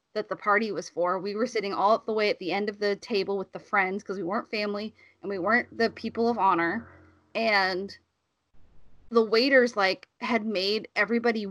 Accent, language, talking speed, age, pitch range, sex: American, English, 200 wpm, 20-39, 195-245 Hz, female